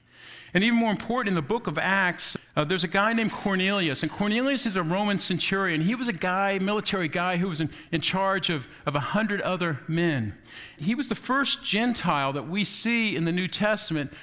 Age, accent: 50-69, American